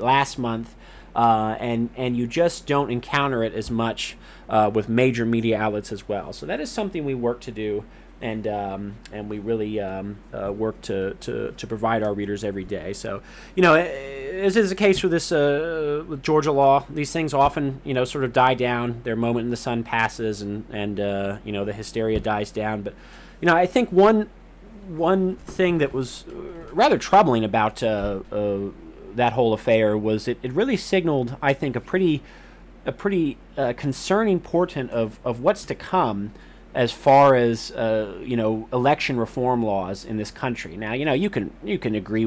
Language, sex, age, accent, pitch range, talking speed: English, male, 30-49, American, 110-140 Hz, 195 wpm